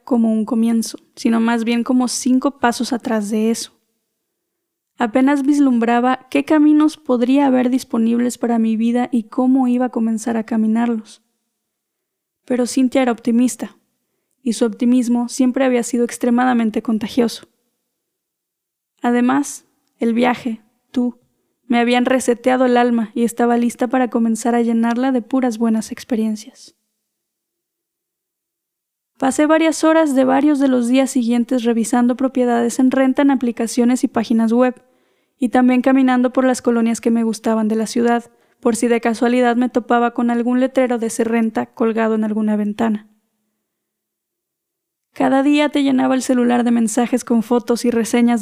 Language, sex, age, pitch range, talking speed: Spanish, female, 10-29, 230-260 Hz, 145 wpm